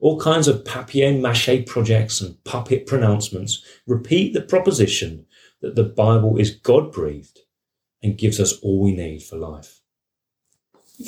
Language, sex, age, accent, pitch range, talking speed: English, male, 30-49, British, 110-150 Hz, 135 wpm